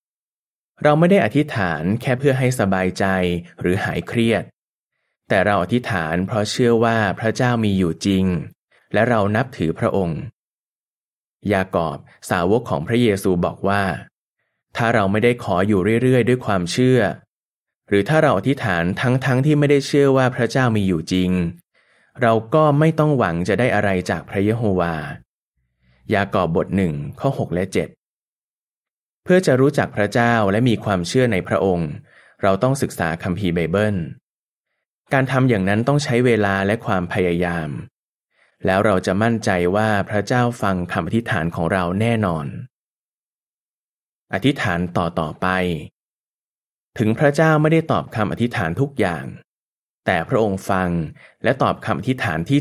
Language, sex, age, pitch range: Thai, male, 20-39, 90-125 Hz